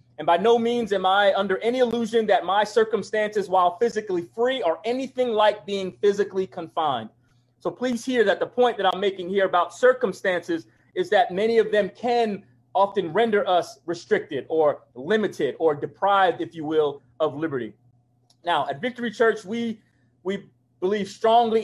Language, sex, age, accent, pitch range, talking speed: English, male, 30-49, American, 165-220 Hz, 165 wpm